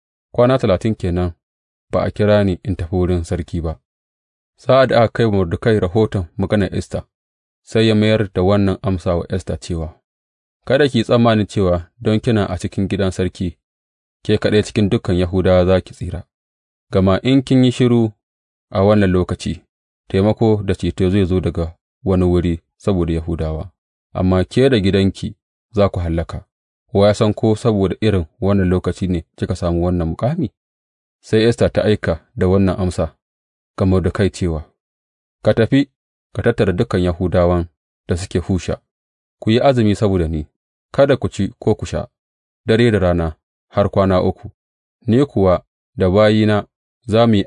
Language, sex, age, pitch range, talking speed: English, male, 30-49, 85-105 Hz, 120 wpm